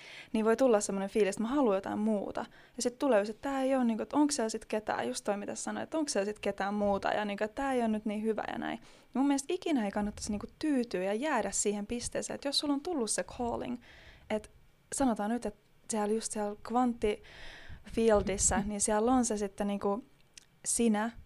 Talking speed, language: 205 wpm, Finnish